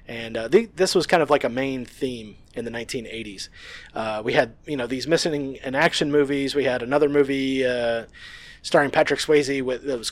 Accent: American